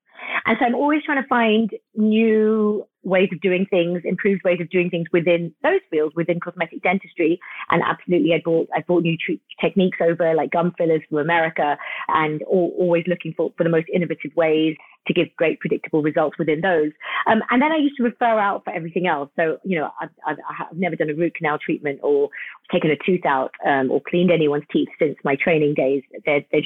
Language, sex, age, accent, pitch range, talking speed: English, female, 30-49, British, 165-210 Hz, 210 wpm